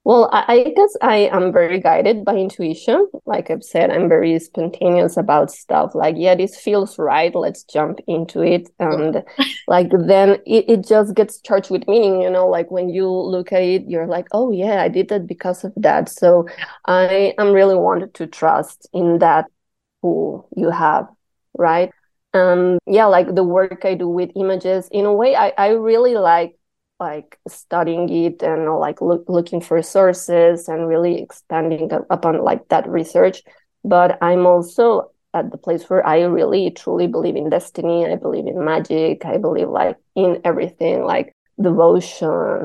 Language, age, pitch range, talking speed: English, 20-39, 175-205 Hz, 170 wpm